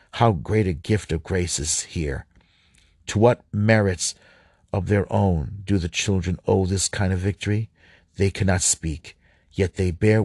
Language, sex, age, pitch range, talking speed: English, male, 50-69, 85-105 Hz, 165 wpm